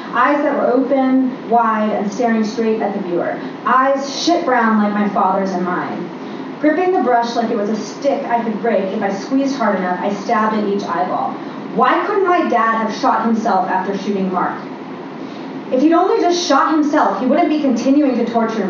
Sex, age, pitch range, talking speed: female, 30-49, 225-295 Hz, 200 wpm